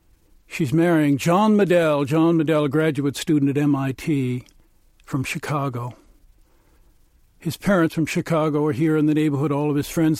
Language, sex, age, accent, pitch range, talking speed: English, male, 60-79, American, 150-190 Hz, 155 wpm